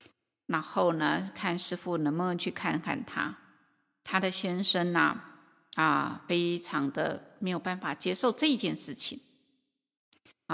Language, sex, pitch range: Chinese, female, 185-270 Hz